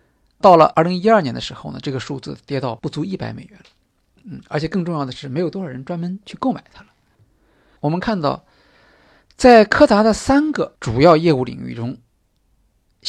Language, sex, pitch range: Chinese, male, 140-210 Hz